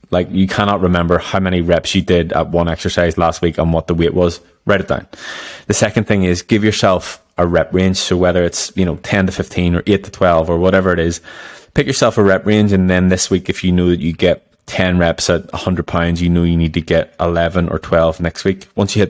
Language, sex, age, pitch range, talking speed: English, male, 20-39, 85-95 Hz, 255 wpm